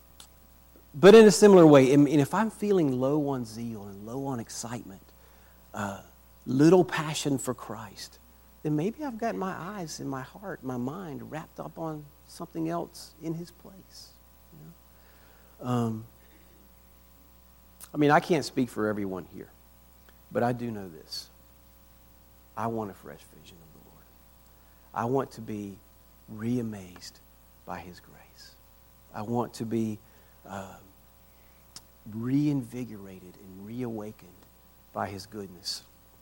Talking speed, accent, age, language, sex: 130 wpm, American, 50-69, English, male